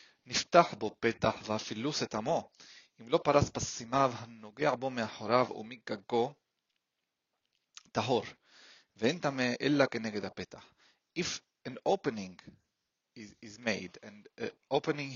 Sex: male